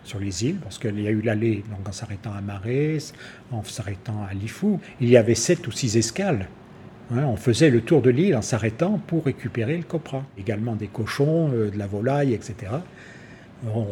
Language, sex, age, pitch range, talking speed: French, male, 50-69, 110-130 Hz, 205 wpm